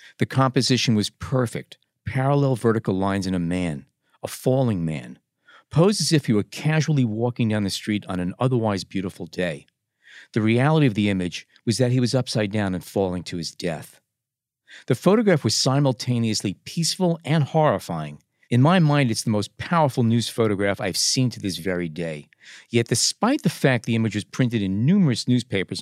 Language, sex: English, male